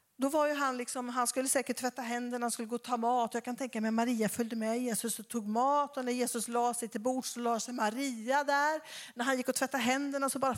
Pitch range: 245-330 Hz